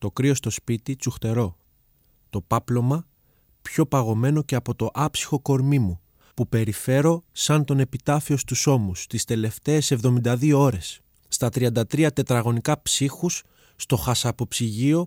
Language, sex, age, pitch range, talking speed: Greek, male, 20-39, 110-145 Hz, 125 wpm